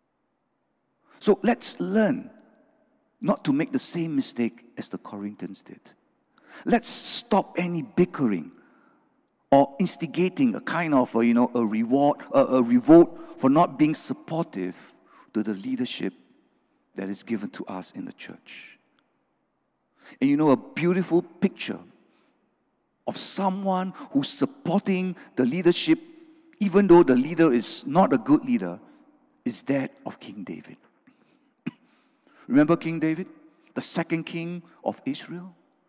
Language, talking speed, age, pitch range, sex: English, 130 wpm, 50-69, 180-280 Hz, male